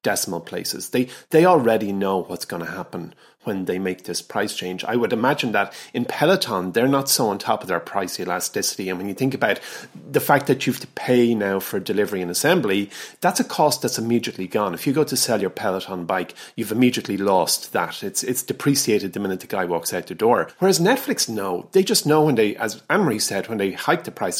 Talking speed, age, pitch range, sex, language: 230 wpm, 30-49, 95-130 Hz, male, English